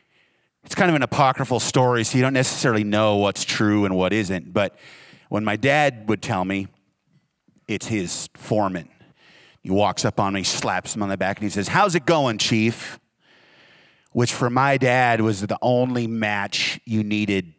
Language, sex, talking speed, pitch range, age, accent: English, male, 180 wpm, 105-130 Hz, 40-59, American